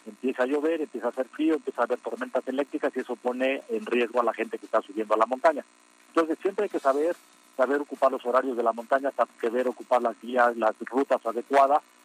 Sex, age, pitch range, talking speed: male, 40-59, 110-135 Hz, 225 wpm